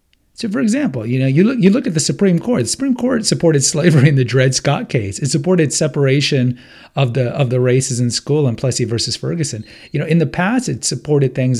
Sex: male